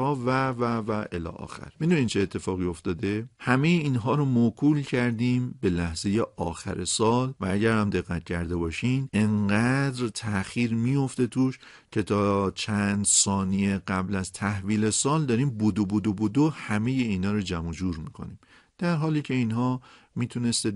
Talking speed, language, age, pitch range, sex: 150 wpm, Persian, 50-69, 100-125 Hz, male